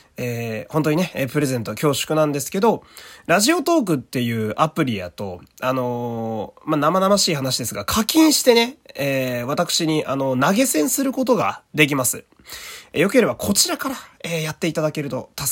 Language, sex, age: Japanese, male, 20-39